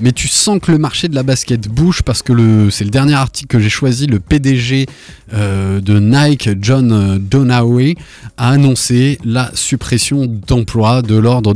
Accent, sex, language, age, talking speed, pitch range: French, male, French, 20-39, 175 wpm, 110-135 Hz